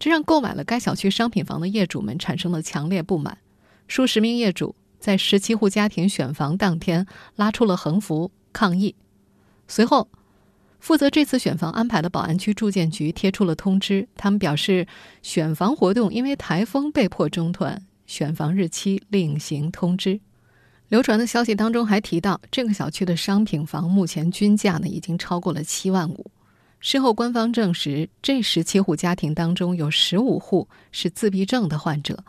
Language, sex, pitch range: Chinese, female, 165-210 Hz